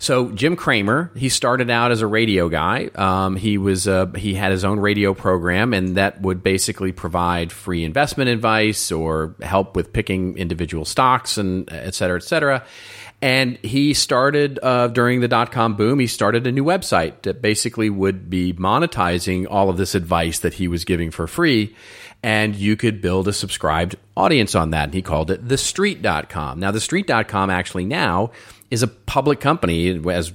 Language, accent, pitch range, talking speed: English, American, 85-110 Hz, 180 wpm